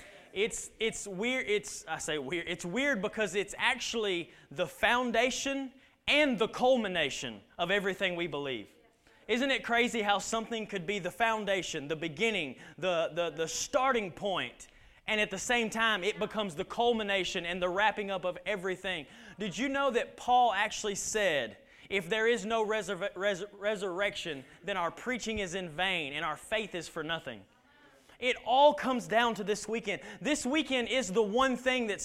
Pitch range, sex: 195-245 Hz, male